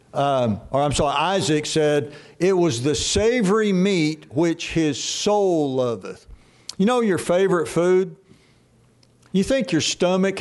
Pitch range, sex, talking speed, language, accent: 150-195 Hz, male, 140 wpm, English, American